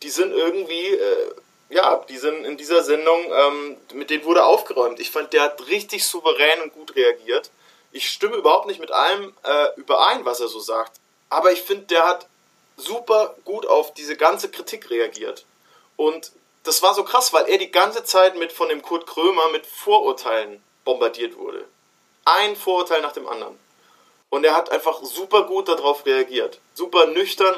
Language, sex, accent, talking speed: German, male, German, 180 wpm